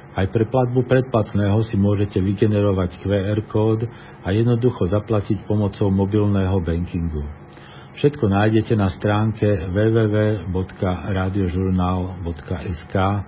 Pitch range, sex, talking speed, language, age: 85-110 Hz, male, 90 wpm, Slovak, 50-69